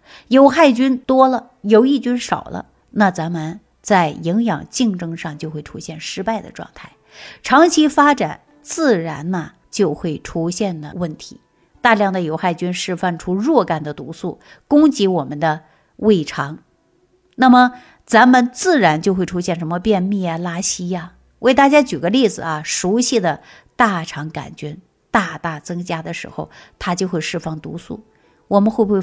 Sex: female